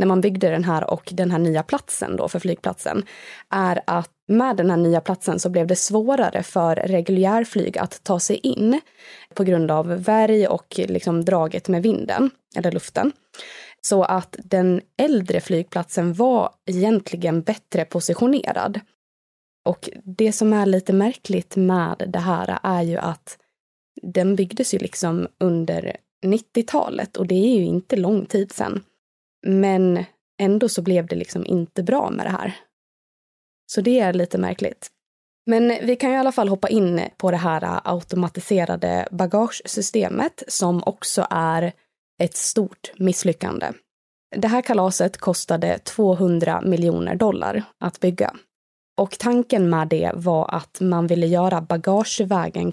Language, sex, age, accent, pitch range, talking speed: Swedish, female, 20-39, native, 175-215 Hz, 150 wpm